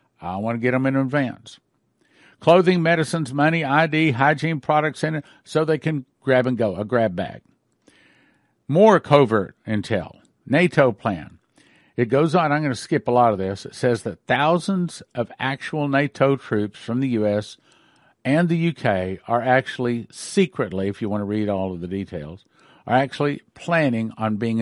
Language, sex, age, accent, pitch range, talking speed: English, male, 50-69, American, 110-150 Hz, 175 wpm